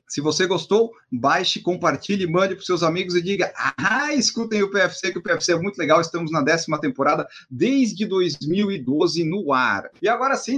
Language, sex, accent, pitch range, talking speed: Portuguese, male, Brazilian, 155-210 Hz, 185 wpm